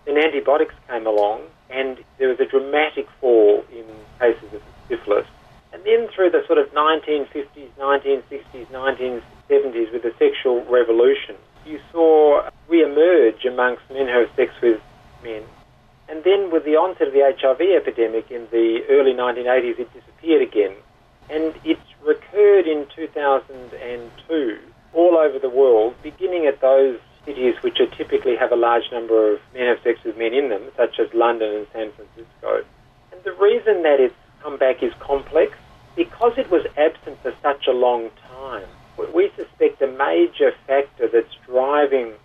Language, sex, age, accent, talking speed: English, male, 40-59, Australian, 160 wpm